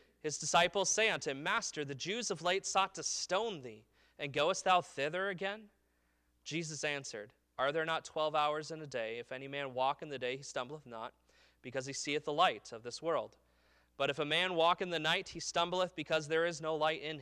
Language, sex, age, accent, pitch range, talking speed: English, male, 30-49, American, 120-165 Hz, 220 wpm